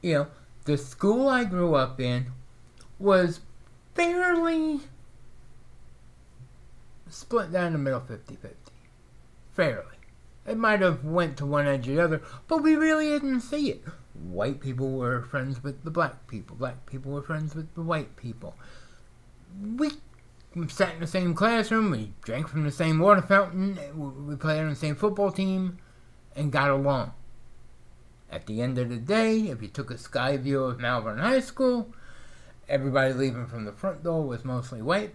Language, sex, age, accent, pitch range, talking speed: English, male, 60-79, American, 120-190 Hz, 165 wpm